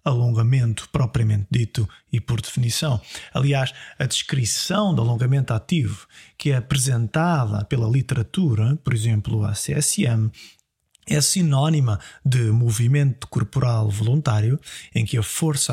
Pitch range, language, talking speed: 115-140 Hz, Portuguese, 120 wpm